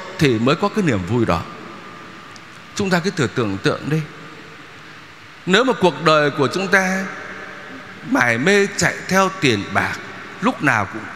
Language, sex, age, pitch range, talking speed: Vietnamese, male, 60-79, 140-225 Hz, 160 wpm